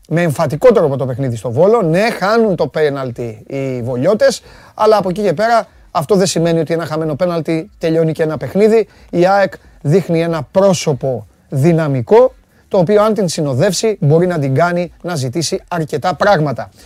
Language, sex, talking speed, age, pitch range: Greek, male, 170 wpm, 30-49, 135-190 Hz